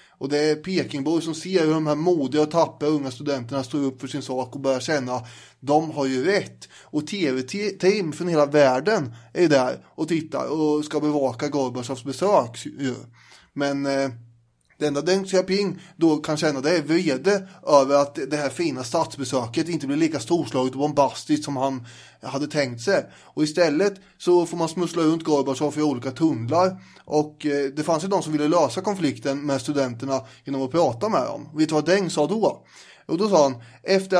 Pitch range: 140-170 Hz